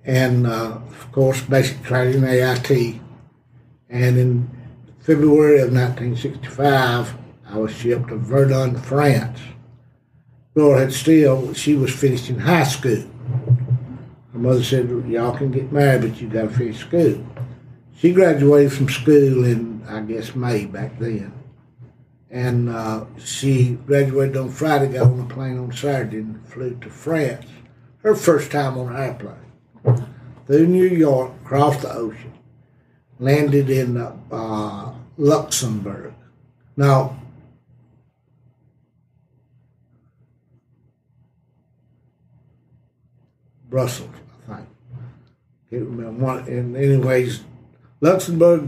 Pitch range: 125-135 Hz